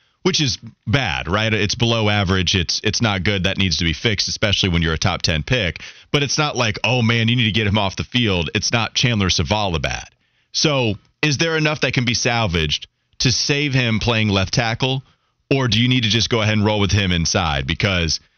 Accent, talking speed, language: American, 230 wpm, English